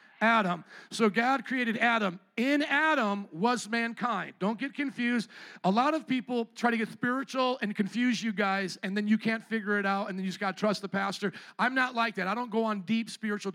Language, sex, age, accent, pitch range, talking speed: English, male, 40-59, American, 195-235 Hz, 220 wpm